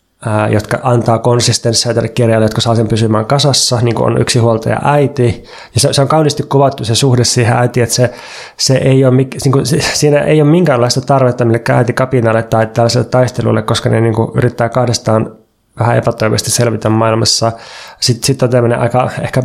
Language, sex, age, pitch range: Finnish, male, 20-39, 115-135 Hz